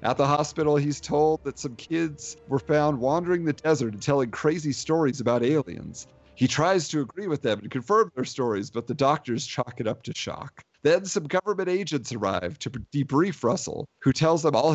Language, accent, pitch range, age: English, American, 115-155 Hz, 40-59